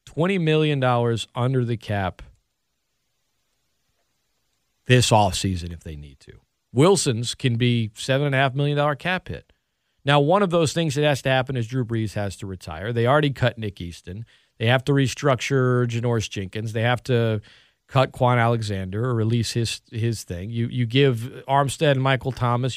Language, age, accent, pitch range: English, 40-59, American, 110-140 Hz